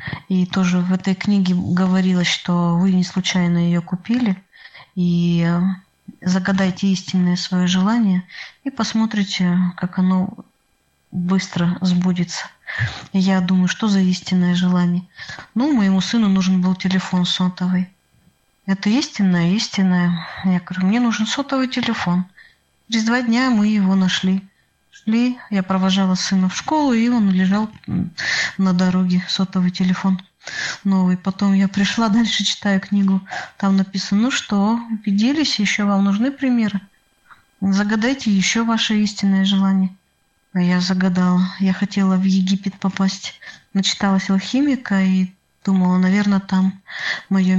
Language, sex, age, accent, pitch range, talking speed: Russian, female, 20-39, native, 185-205 Hz, 125 wpm